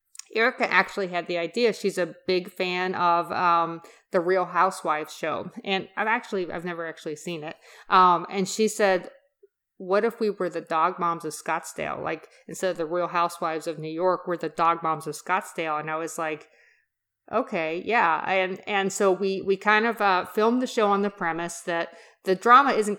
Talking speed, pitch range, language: 195 wpm, 170-200 Hz, English